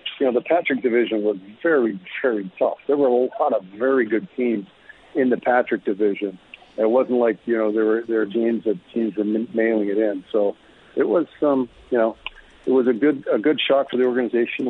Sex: male